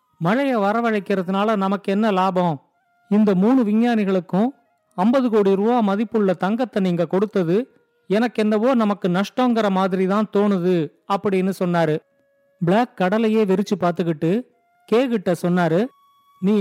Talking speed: 110 wpm